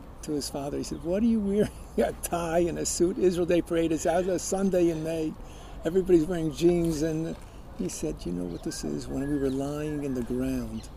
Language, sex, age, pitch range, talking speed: English, male, 50-69, 120-155 Hz, 220 wpm